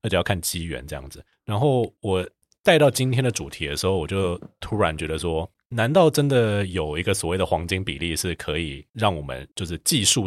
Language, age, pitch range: Chinese, 30-49, 80-110 Hz